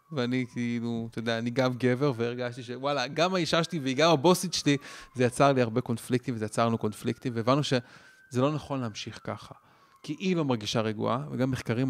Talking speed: 185 wpm